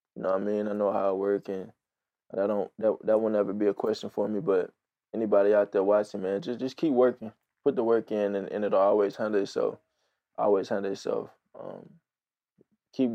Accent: American